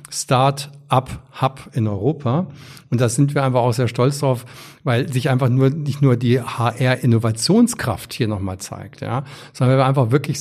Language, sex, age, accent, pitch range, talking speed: German, male, 50-69, German, 115-130 Hz, 160 wpm